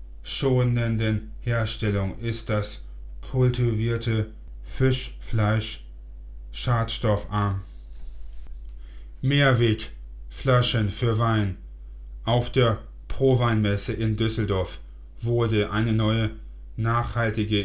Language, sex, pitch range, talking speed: German, male, 85-110 Hz, 65 wpm